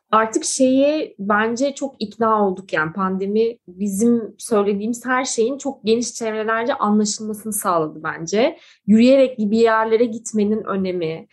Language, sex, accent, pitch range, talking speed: Turkish, female, native, 190-255 Hz, 120 wpm